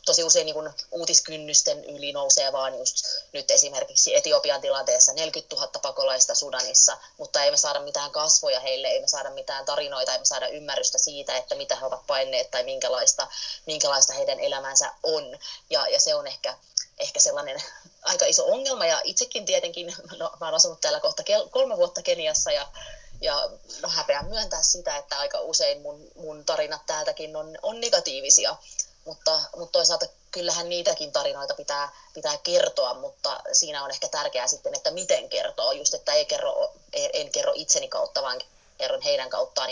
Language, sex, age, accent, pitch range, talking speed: Finnish, female, 20-39, native, 185-305 Hz, 160 wpm